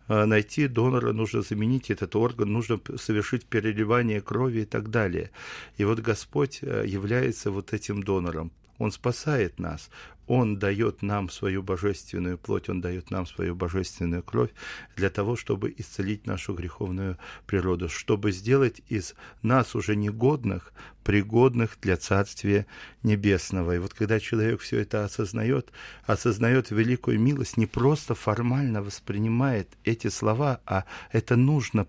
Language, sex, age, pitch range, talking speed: Russian, male, 40-59, 100-125 Hz, 135 wpm